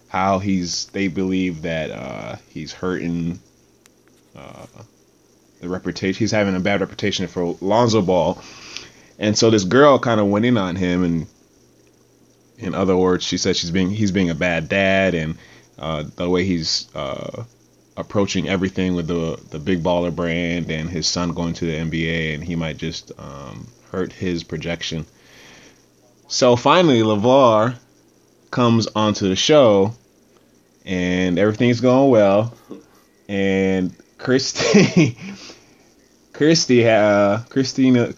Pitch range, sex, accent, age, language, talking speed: 90-115 Hz, male, American, 30-49, English, 135 wpm